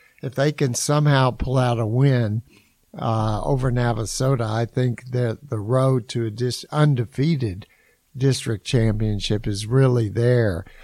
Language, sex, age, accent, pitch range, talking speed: English, male, 60-79, American, 115-135 Hz, 135 wpm